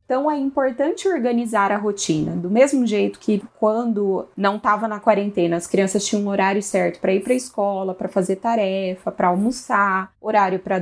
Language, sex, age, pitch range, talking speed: Portuguese, female, 20-39, 195-230 Hz, 185 wpm